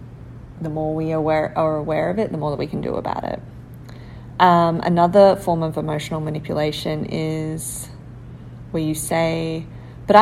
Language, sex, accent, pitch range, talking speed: English, female, Australian, 150-180 Hz, 155 wpm